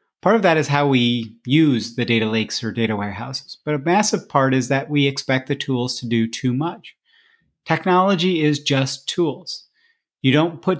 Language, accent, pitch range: English, American, 125-155 Hz